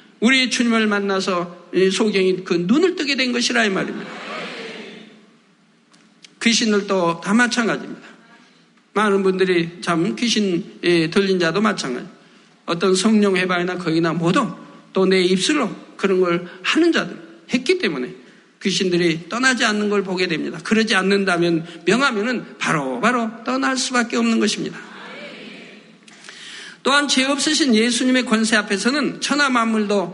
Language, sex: Korean, male